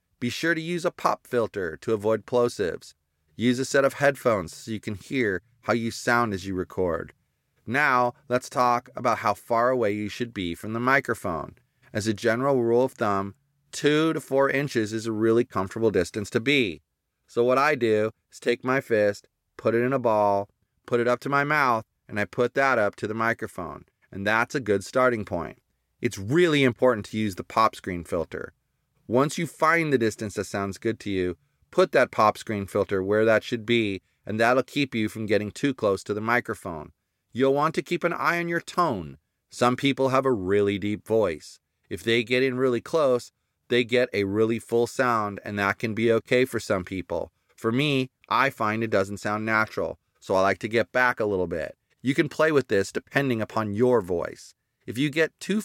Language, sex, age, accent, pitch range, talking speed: English, male, 30-49, American, 105-130 Hz, 210 wpm